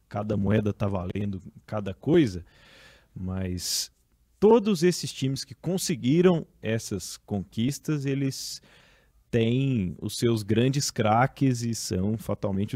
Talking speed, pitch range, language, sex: 110 wpm, 105-140 Hz, Portuguese, male